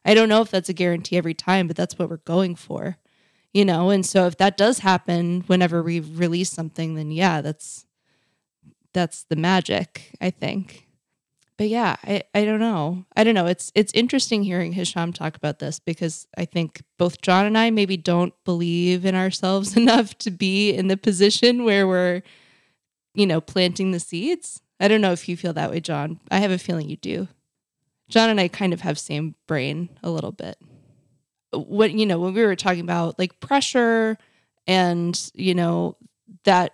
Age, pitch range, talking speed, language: 20-39, 170-205 Hz, 190 wpm, English